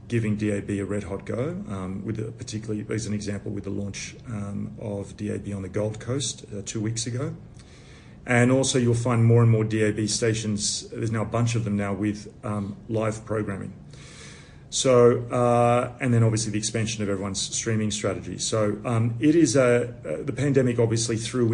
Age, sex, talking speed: 40-59, male, 190 wpm